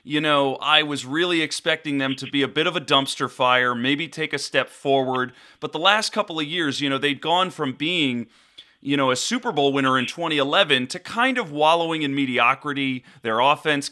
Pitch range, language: 125-165 Hz, English